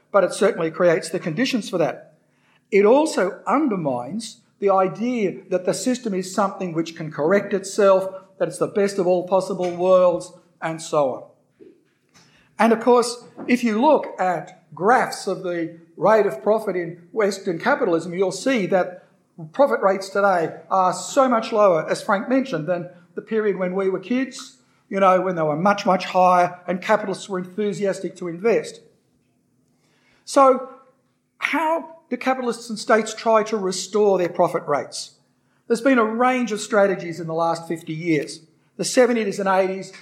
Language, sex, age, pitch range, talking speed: English, male, 50-69, 175-220 Hz, 165 wpm